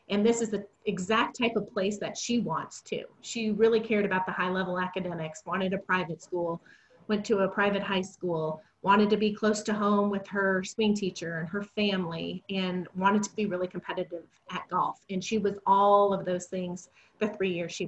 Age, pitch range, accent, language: 30-49, 185-220 Hz, American, English